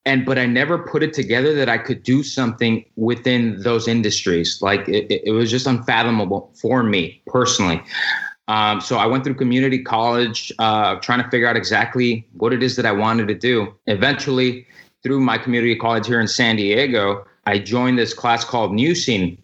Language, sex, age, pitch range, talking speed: English, male, 20-39, 110-130 Hz, 190 wpm